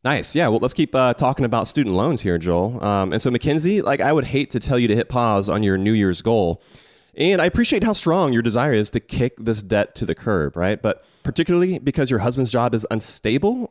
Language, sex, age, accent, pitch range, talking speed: English, male, 30-49, American, 105-135 Hz, 240 wpm